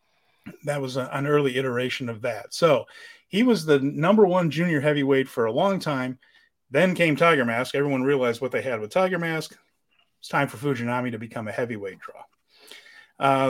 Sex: male